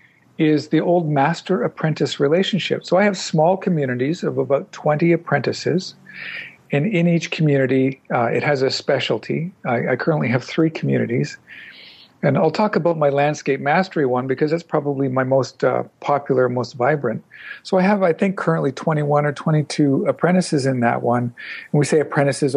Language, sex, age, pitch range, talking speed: English, male, 50-69, 135-170 Hz, 170 wpm